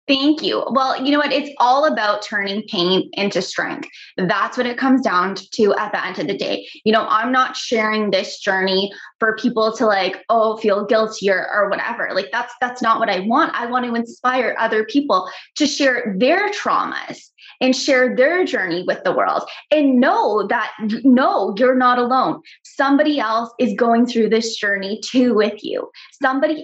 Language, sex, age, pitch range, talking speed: English, female, 20-39, 215-270 Hz, 190 wpm